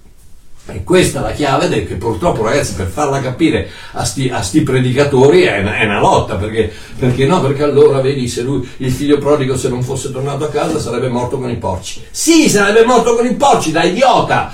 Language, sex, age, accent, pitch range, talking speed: Italian, male, 60-79, native, 95-150 Hz, 215 wpm